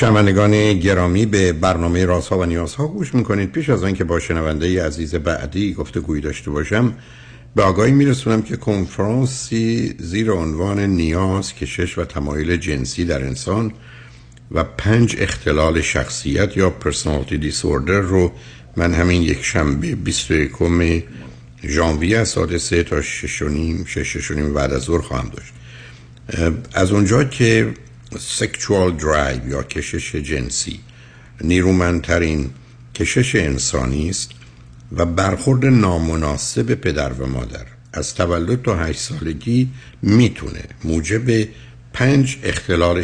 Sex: male